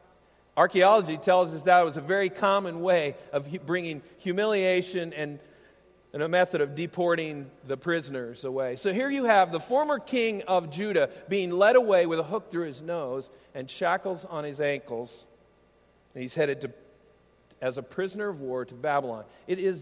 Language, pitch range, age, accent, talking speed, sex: English, 135-190 Hz, 50-69, American, 170 wpm, male